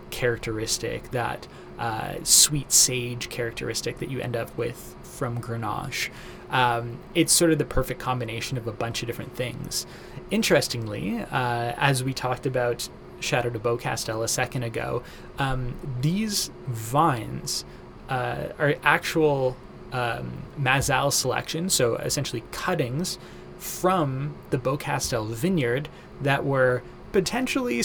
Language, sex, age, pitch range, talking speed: English, male, 20-39, 120-150 Hz, 125 wpm